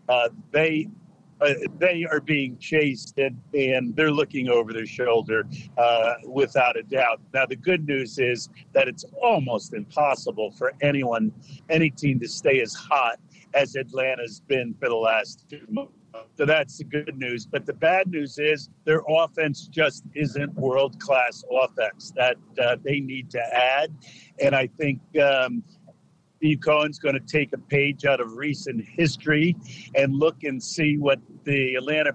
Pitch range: 135-155 Hz